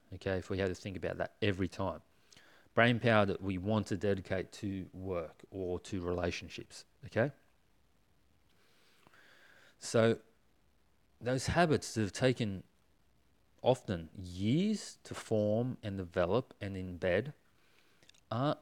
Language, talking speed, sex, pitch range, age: English, 120 wpm, male, 95-115 Hz, 30-49